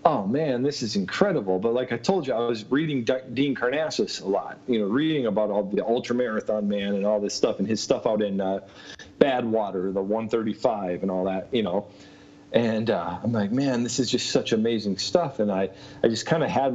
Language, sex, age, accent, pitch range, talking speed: English, male, 40-59, American, 100-135 Hz, 225 wpm